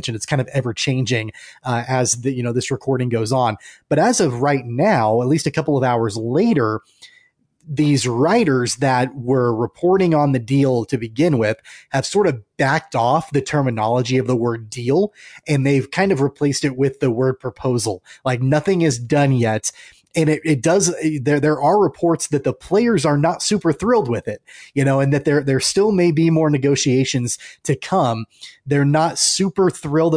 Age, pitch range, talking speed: 20-39, 125-155 Hz, 195 wpm